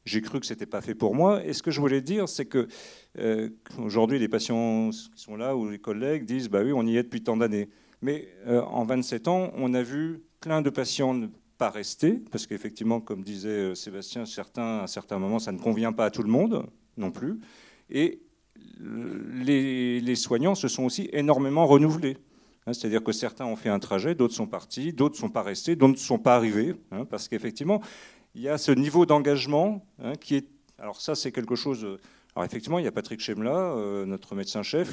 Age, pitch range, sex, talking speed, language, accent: 40-59, 115-150 Hz, male, 220 wpm, French, French